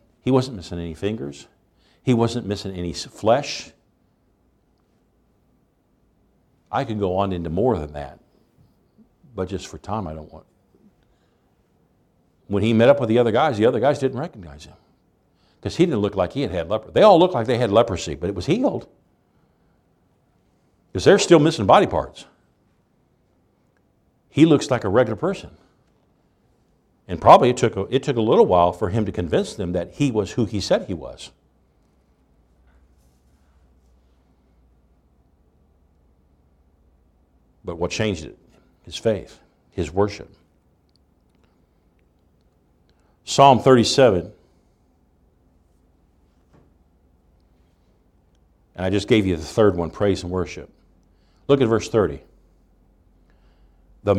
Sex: male